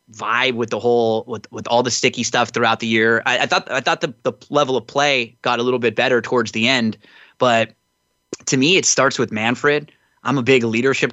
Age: 20-39